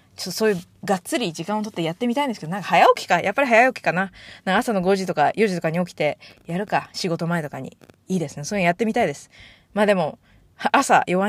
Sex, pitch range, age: female, 165-220 Hz, 20-39